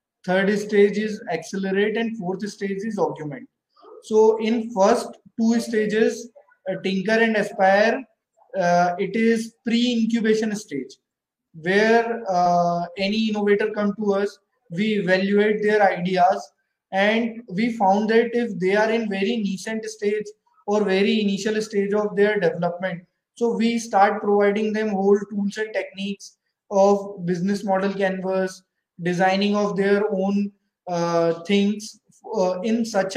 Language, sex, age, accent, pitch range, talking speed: English, male, 20-39, Indian, 195-230 Hz, 130 wpm